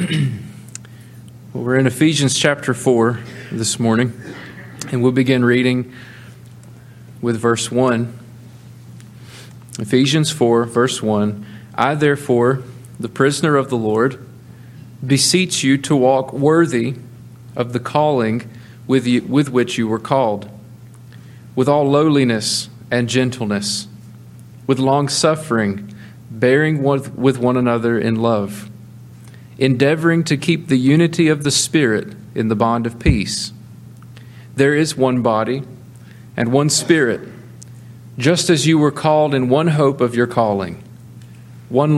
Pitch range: 115-135 Hz